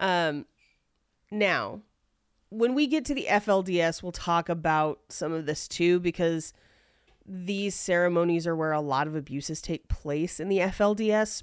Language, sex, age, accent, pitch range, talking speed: English, female, 30-49, American, 170-220 Hz, 150 wpm